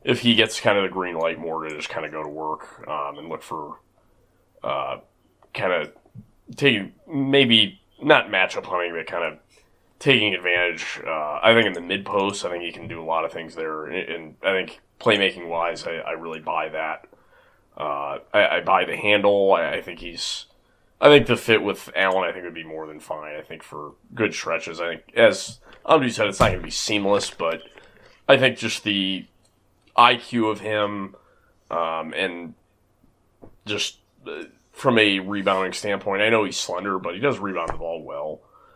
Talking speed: 195 wpm